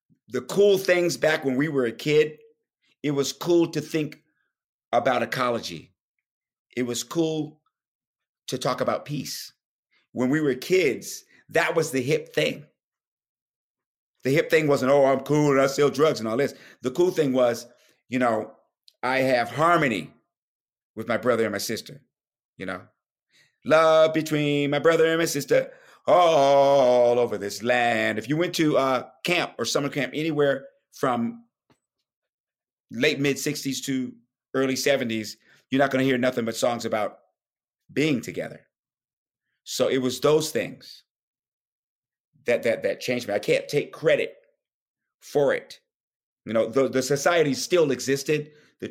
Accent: American